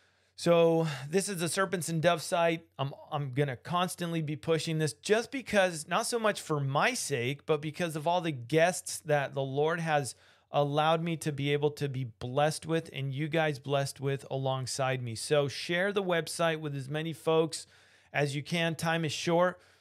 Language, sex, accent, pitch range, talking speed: English, male, American, 140-175 Hz, 190 wpm